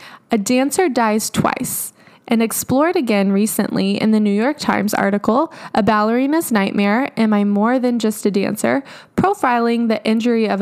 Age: 10-29